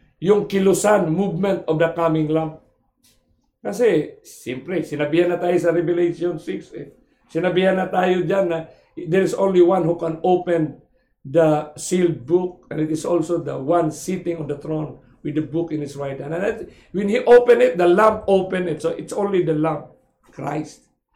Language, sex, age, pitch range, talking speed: English, male, 50-69, 165-235 Hz, 180 wpm